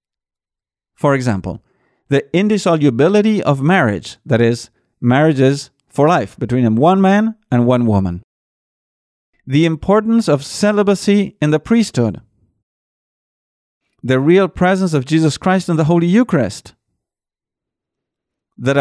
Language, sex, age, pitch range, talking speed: English, male, 50-69, 130-190 Hz, 110 wpm